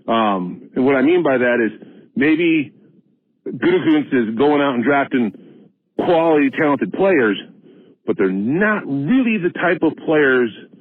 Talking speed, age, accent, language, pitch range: 145 wpm, 50-69, American, English, 120-175 Hz